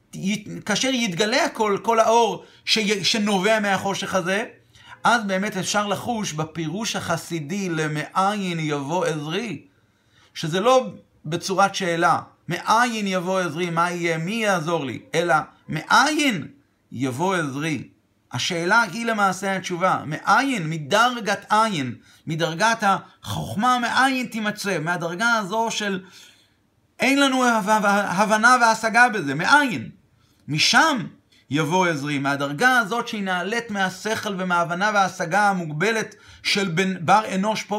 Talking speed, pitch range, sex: 115 wpm, 150-210 Hz, male